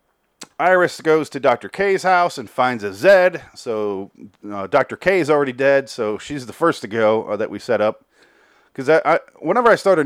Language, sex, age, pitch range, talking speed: English, male, 30-49, 105-145 Hz, 210 wpm